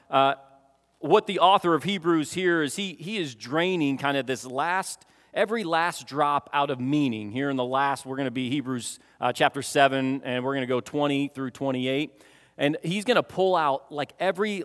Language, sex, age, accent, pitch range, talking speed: English, male, 40-59, American, 135-175 Hz, 205 wpm